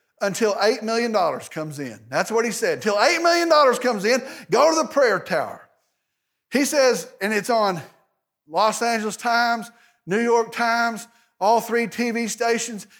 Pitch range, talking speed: 205-275 Hz, 155 wpm